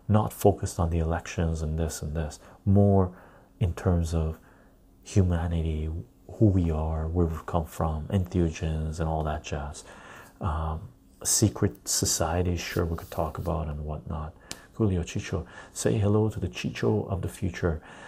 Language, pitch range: English, 85-105 Hz